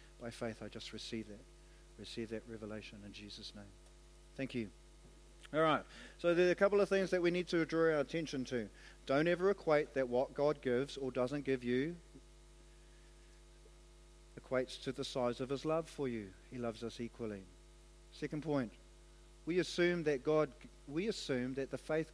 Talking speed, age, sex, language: 170 wpm, 50-69, male, English